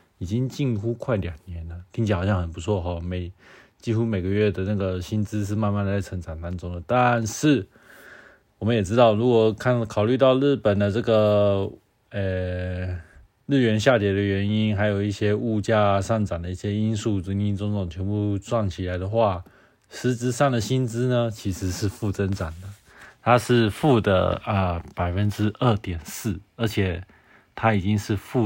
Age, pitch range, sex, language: 20-39, 95-115 Hz, male, Chinese